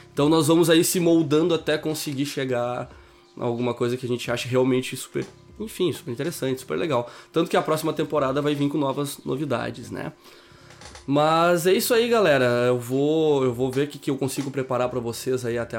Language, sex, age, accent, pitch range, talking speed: Portuguese, male, 20-39, Brazilian, 120-150 Hz, 205 wpm